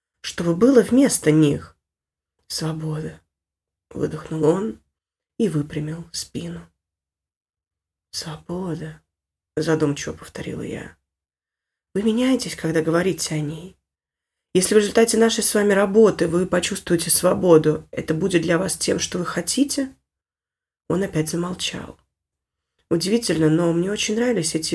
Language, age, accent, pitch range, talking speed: Russian, 20-39, native, 150-180 Hz, 115 wpm